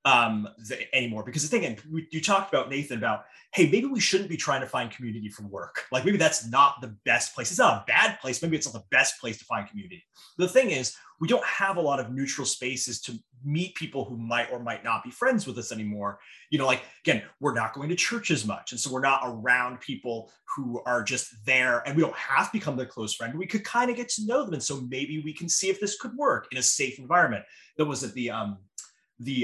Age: 30-49